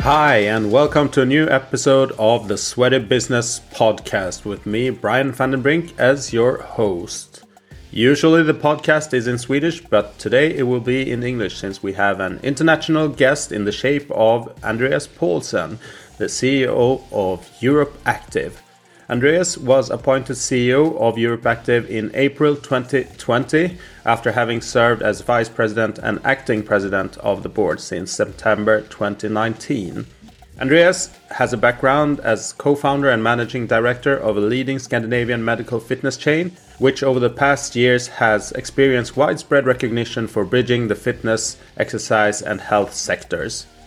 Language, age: Swedish, 30-49